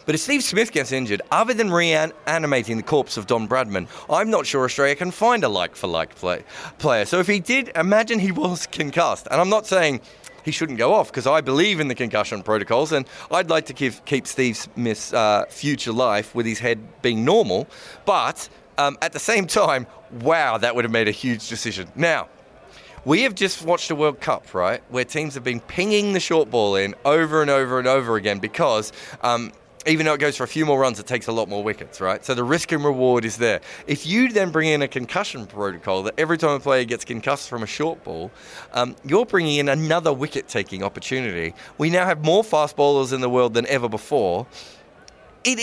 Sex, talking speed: male, 215 wpm